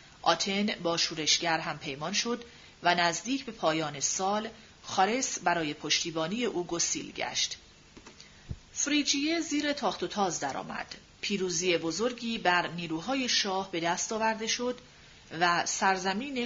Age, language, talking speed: 40-59, Persian, 125 wpm